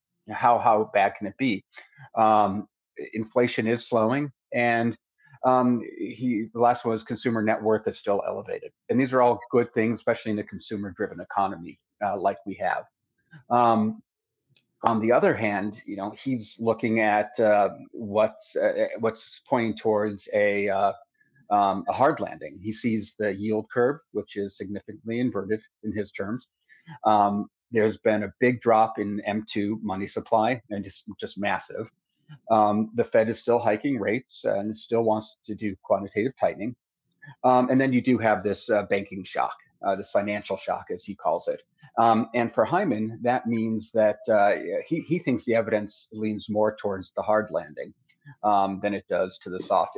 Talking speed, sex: 175 wpm, male